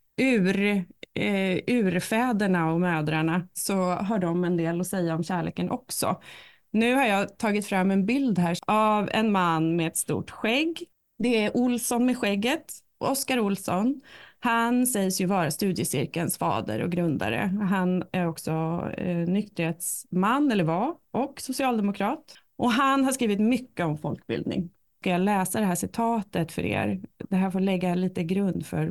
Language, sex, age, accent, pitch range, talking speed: Swedish, female, 30-49, native, 170-230 Hz, 160 wpm